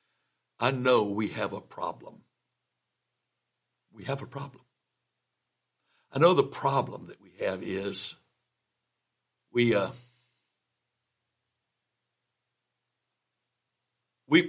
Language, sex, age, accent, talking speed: English, male, 60-79, American, 85 wpm